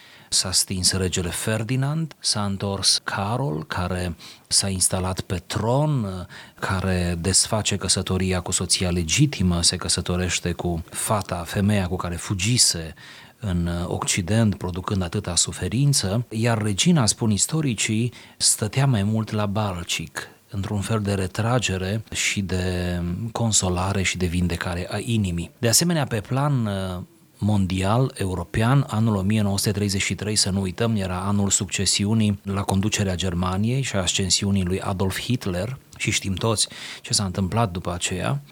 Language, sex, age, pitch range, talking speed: Romanian, male, 30-49, 90-115 Hz, 130 wpm